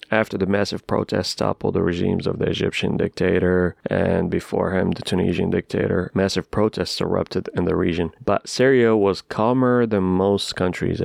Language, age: Arabic, 30-49